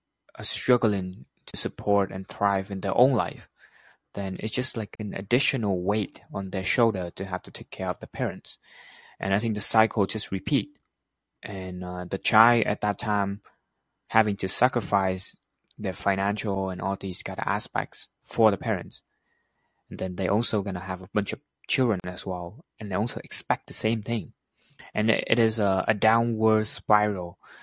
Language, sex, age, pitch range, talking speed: English, male, 20-39, 95-110 Hz, 180 wpm